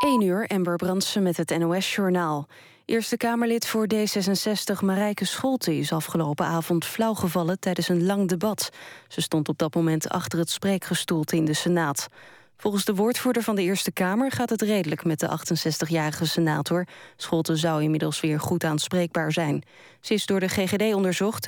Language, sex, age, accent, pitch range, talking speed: Dutch, female, 20-39, Dutch, 160-200 Hz, 165 wpm